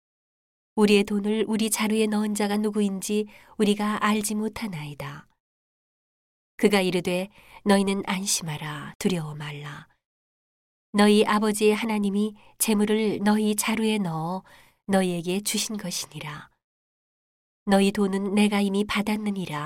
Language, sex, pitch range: Korean, female, 180-215 Hz